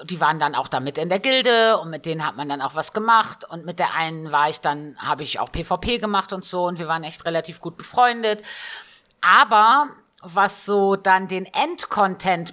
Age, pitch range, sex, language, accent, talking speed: 50-69, 165-225 Hz, female, German, German, 215 wpm